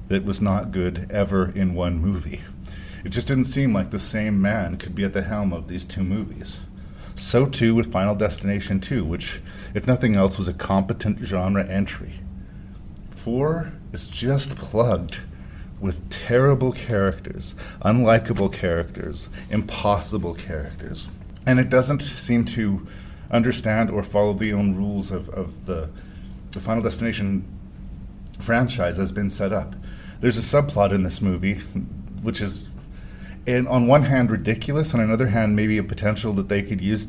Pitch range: 95-110 Hz